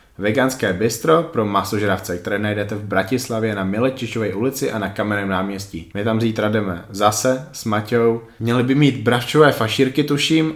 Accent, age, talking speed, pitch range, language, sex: native, 20-39, 160 wpm, 100-115 Hz, Czech, male